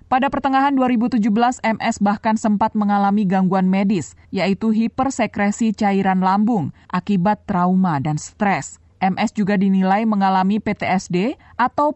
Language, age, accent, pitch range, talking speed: Indonesian, 20-39, native, 190-240 Hz, 115 wpm